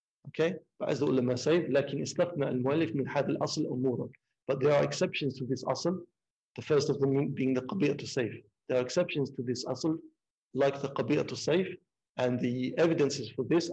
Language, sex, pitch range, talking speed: English, male, 125-150 Hz, 175 wpm